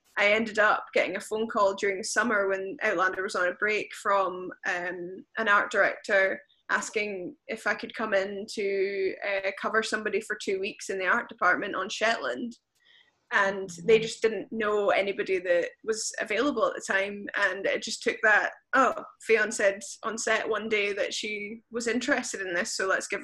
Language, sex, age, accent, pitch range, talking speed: English, female, 10-29, British, 200-235 Hz, 190 wpm